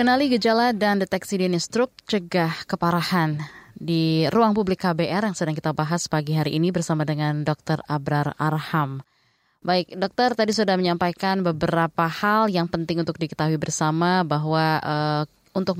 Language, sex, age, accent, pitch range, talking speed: Indonesian, female, 20-39, native, 160-185 Hz, 150 wpm